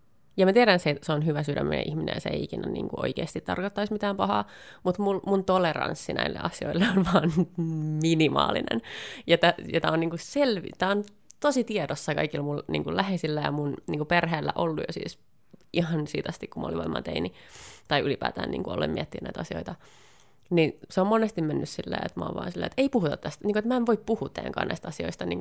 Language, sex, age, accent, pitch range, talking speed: Finnish, female, 30-49, native, 155-210 Hz, 205 wpm